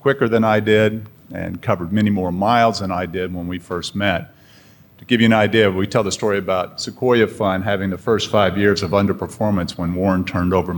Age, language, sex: 50-69, English, male